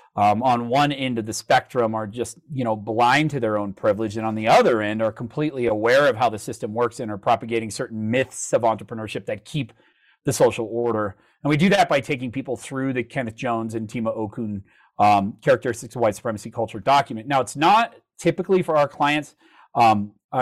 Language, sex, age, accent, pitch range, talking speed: English, male, 40-59, American, 115-150 Hz, 210 wpm